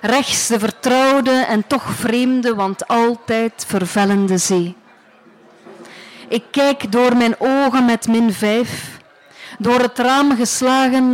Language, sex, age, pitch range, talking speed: Dutch, female, 40-59, 210-250 Hz, 120 wpm